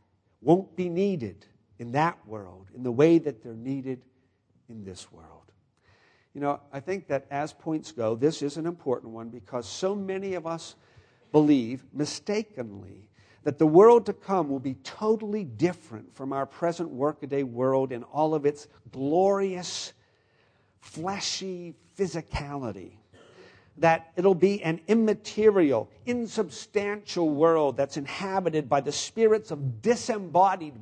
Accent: American